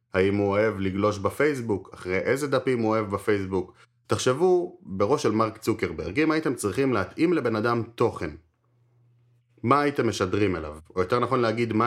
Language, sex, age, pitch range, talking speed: Hebrew, male, 30-49, 100-135 Hz, 160 wpm